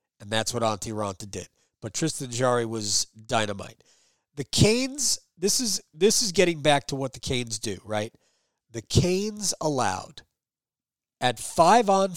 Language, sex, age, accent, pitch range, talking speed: English, male, 40-59, American, 115-175 Hz, 150 wpm